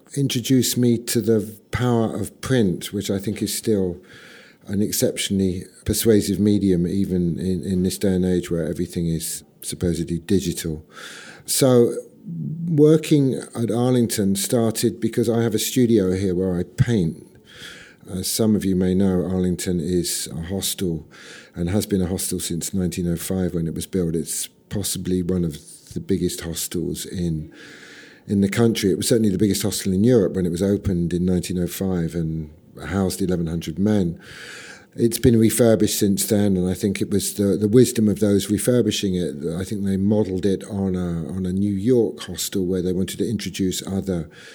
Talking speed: 170 wpm